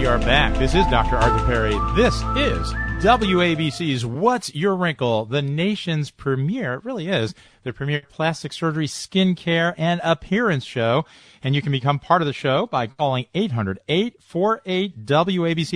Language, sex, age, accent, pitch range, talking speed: English, male, 40-59, American, 120-185 Hz, 150 wpm